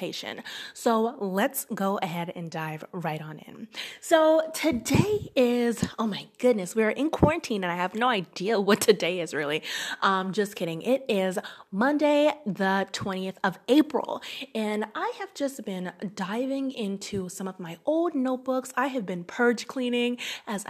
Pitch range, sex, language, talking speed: 185-245 Hz, female, English, 160 wpm